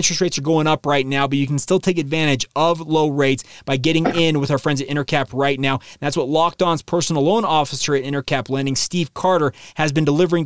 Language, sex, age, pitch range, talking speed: English, male, 30-49, 135-170 Hz, 235 wpm